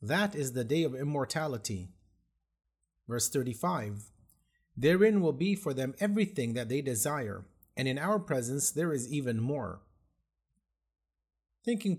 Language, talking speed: English, 130 wpm